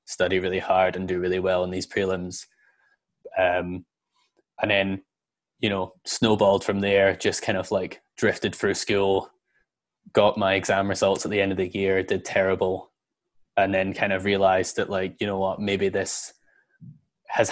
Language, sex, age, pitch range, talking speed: English, male, 10-29, 95-100 Hz, 170 wpm